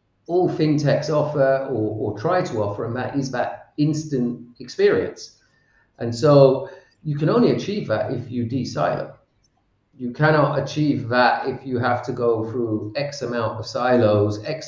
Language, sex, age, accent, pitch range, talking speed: English, male, 40-59, British, 110-140 Hz, 160 wpm